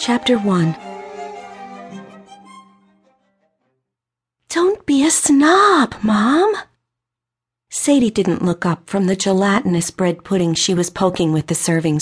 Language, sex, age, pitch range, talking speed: English, female, 50-69, 155-230 Hz, 110 wpm